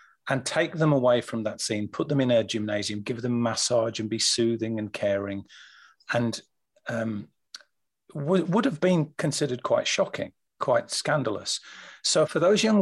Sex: male